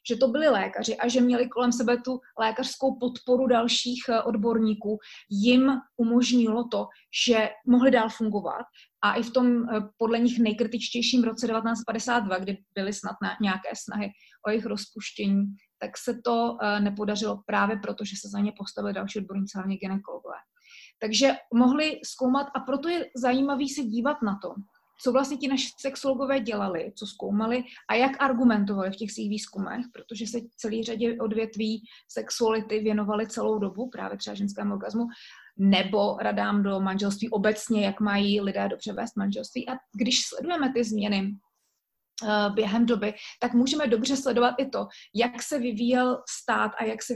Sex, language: female, Slovak